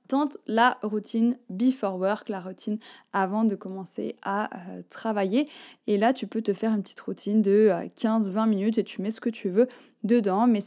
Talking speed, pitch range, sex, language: 185 wpm, 200-245 Hz, female, French